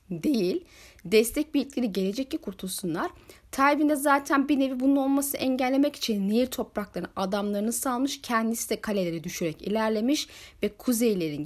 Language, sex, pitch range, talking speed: Turkish, female, 185-275 Hz, 135 wpm